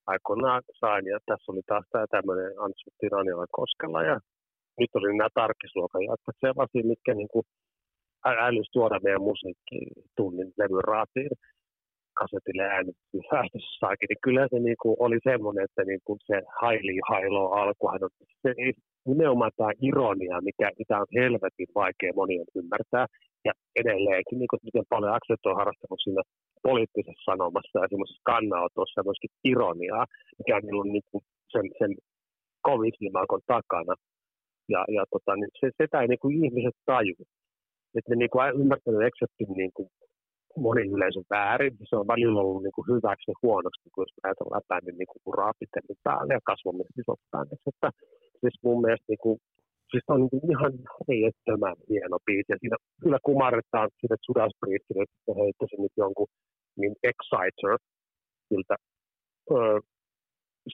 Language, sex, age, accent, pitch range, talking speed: Finnish, male, 40-59, native, 100-130 Hz, 140 wpm